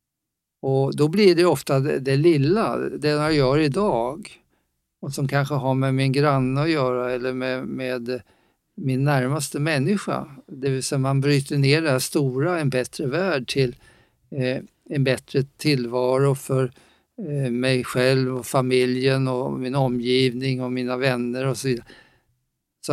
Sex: male